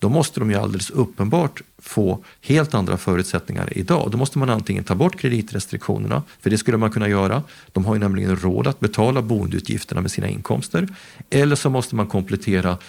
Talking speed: 185 wpm